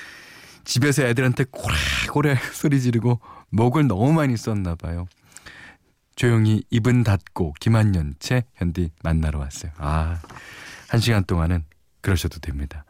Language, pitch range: Korean, 90-140 Hz